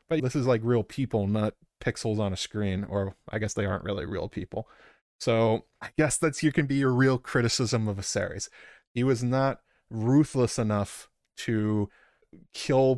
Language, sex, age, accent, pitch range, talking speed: English, male, 20-39, American, 105-125 Hz, 180 wpm